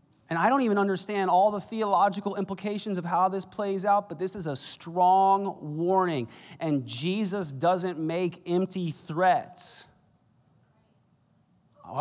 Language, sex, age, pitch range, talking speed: English, male, 30-49, 150-205 Hz, 135 wpm